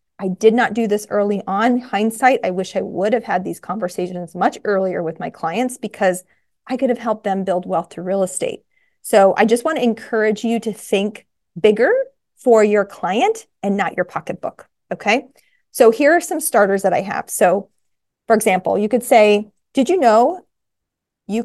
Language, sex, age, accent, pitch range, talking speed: English, female, 30-49, American, 190-245 Hz, 190 wpm